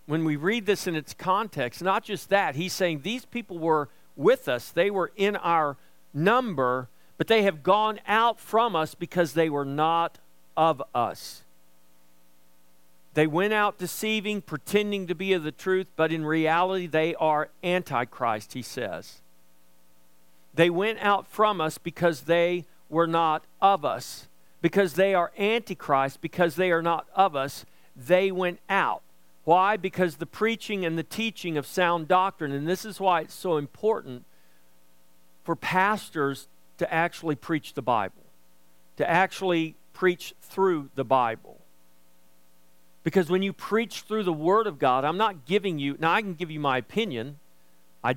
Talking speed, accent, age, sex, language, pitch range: 160 wpm, American, 50-69, male, English, 135-190 Hz